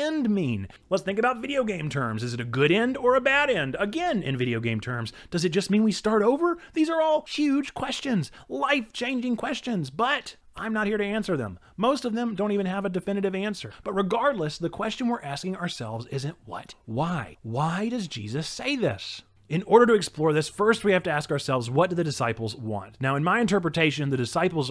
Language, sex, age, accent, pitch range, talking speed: English, male, 30-49, American, 135-210 Hz, 215 wpm